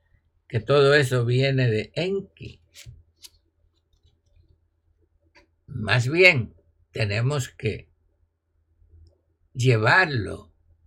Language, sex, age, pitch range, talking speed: Spanish, male, 60-79, 80-135 Hz, 60 wpm